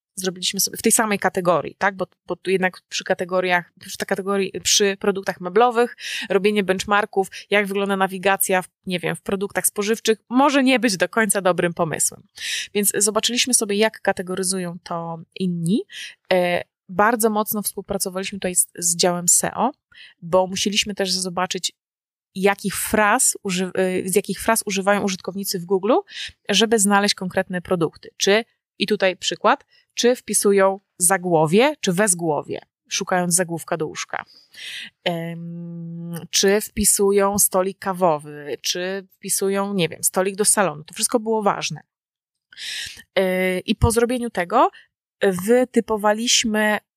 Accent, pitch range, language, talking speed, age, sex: native, 185-220 Hz, Polish, 125 wpm, 20-39, female